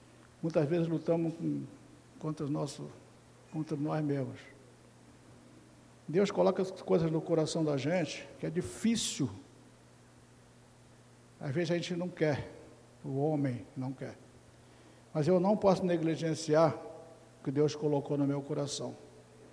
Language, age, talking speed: Portuguese, 60-79, 130 wpm